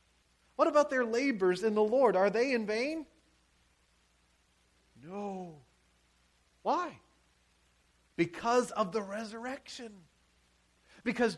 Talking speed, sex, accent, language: 95 wpm, male, American, English